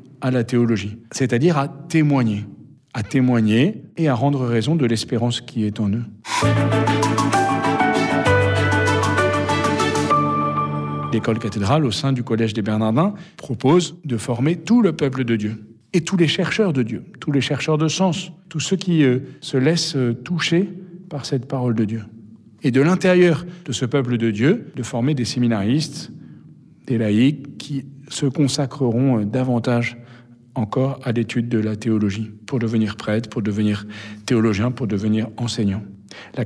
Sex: male